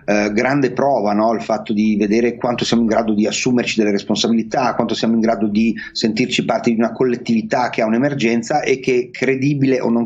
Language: Italian